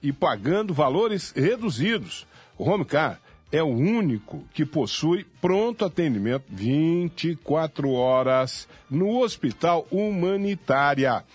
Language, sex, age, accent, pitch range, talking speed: Portuguese, male, 50-69, Brazilian, 125-180 Hz, 95 wpm